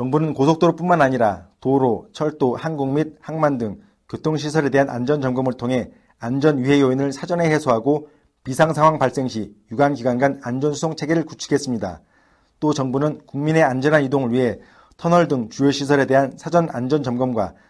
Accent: native